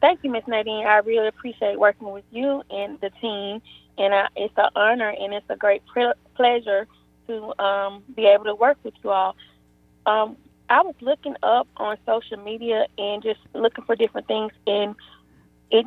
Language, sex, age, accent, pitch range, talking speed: English, female, 20-39, American, 205-235 Hz, 185 wpm